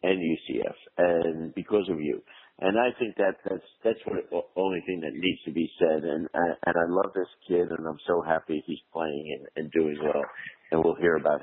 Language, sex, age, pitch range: English, male, 60-79, 85-105 Hz